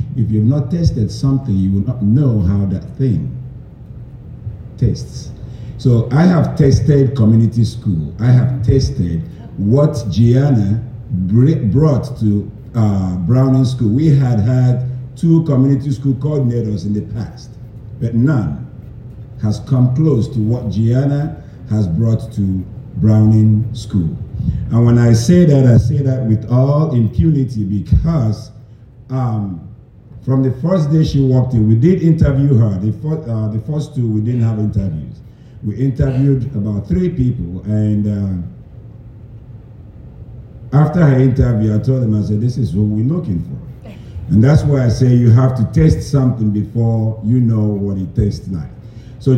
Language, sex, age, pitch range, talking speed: English, male, 50-69, 110-135 Hz, 155 wpm